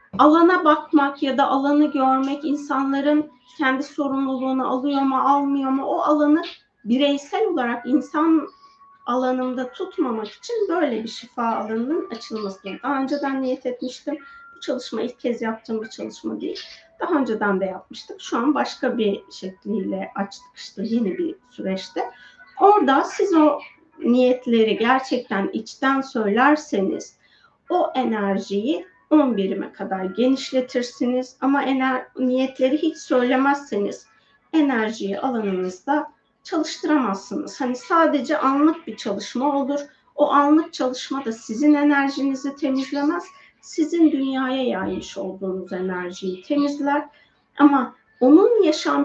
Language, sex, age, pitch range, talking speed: Turkish, female, 30-49, 225-295 Hz, 115 wpm